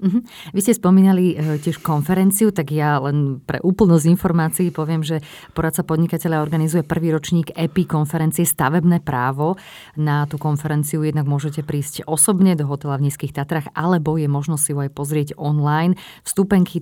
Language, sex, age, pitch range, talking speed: Slovak, female, 30-49, 140-165 Hz, 150 wpm